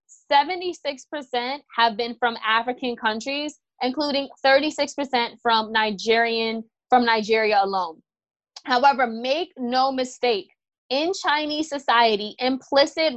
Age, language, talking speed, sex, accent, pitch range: 20-39, English, 95 wpm, female, American, 235-290 Hz